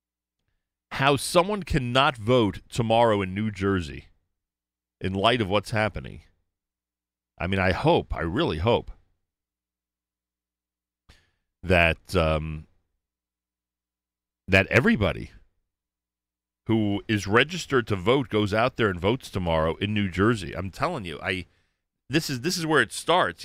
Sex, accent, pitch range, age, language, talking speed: male, American, 70-110 Hz, 40-59, English, 125 wpm